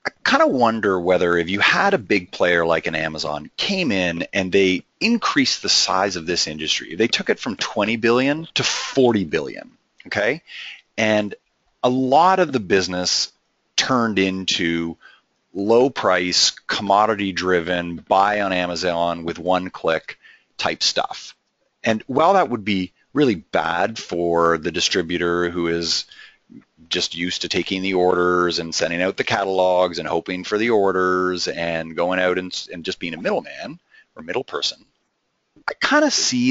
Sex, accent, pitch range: male, American, 85-105 Hz